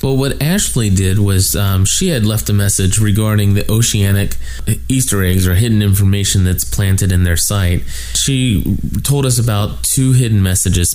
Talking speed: 170 wpm